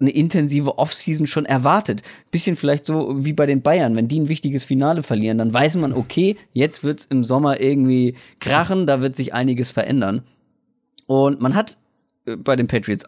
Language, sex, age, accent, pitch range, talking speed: German, male, 30-49, German, 120-150 Hz, 185 wpm